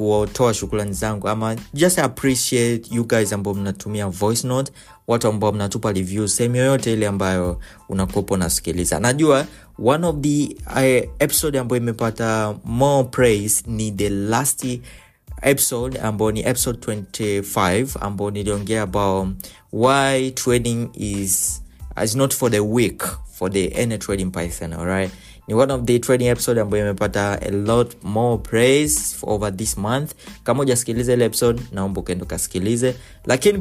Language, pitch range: Swahili, 100-125 Hz